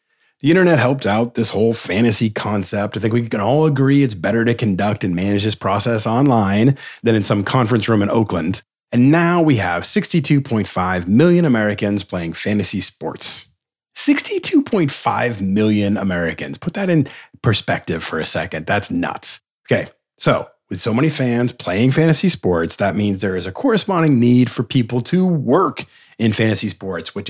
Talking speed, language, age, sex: 165 wpm, English, 30-49, male